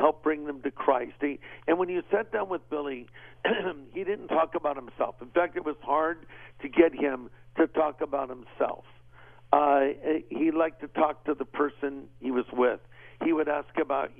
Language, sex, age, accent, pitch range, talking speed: English, male, 50-69, American, 135-165 Hz, 190 wpm